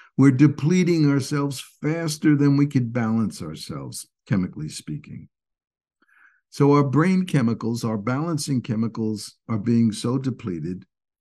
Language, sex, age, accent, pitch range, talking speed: English, male, 60-79, American, 100-125 Hz, 120 wpm